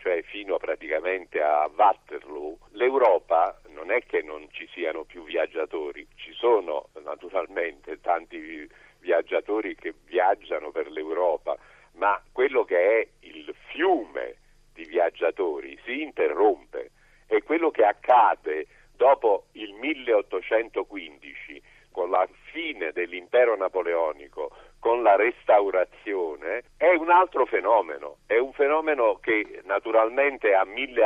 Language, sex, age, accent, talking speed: Italian, male, 50-69, native, 115 wpm